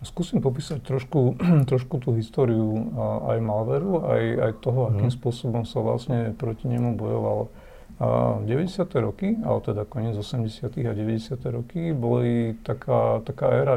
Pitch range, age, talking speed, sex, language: 115-135 Hz, 50-69, 130 wpm, male, Slovak